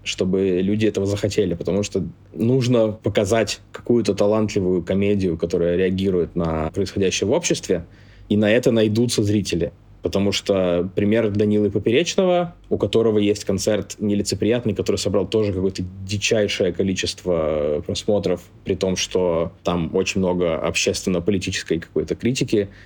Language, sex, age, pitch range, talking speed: Russian, male, 20-39, 95-105 Hz, 125 wpm